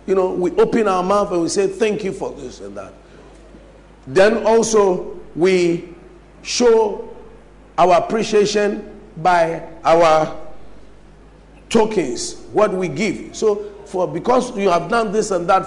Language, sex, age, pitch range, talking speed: English, male, 50-69, 175-225 Hz, 140 wpm